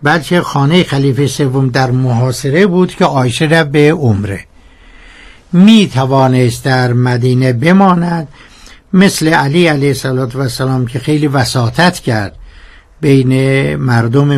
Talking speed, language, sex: 115 wpm, Persian, male